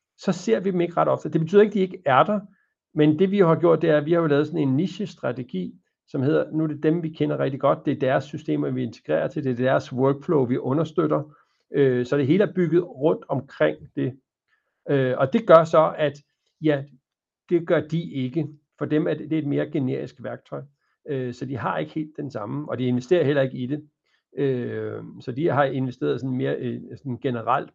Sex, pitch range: male, 130-165 Hz